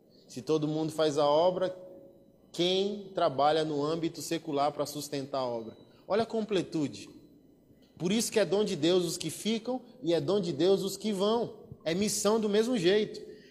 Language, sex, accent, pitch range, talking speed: Portuguese, male, Brazilian, 155-210 Hz, 180 wpm